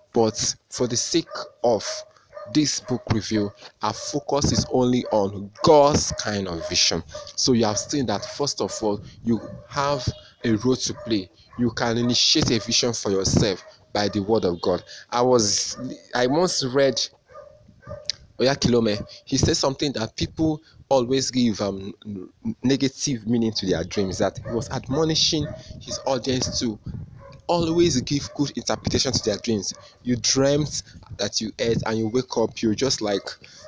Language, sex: English, male